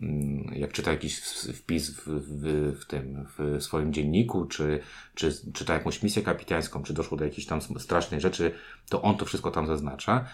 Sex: male